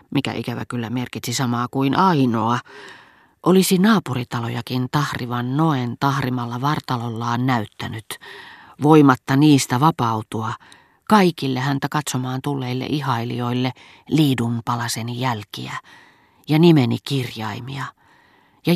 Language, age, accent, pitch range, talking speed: Finnish, 40-59, native, 120-150 Hz, 95 wpm